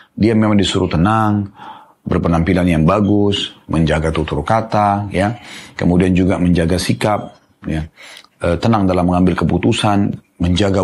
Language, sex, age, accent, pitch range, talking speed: Indonesian, male, 30-49, native, 90-120 Hz, 120 wpm